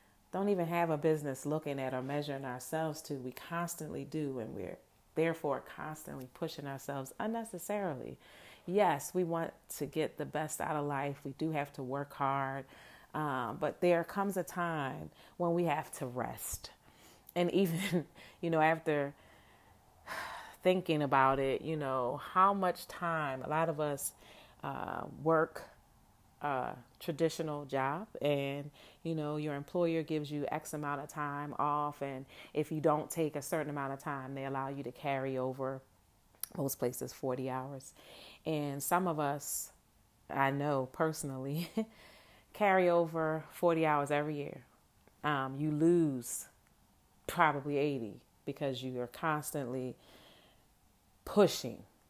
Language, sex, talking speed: English, female, 145 wpm